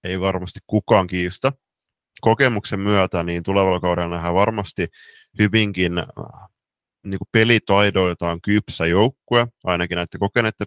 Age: 20-39